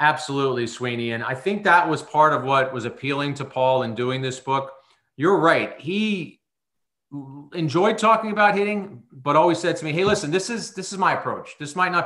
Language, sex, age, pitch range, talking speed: English, male, 40-59, 120-155 Hz, 205 wpm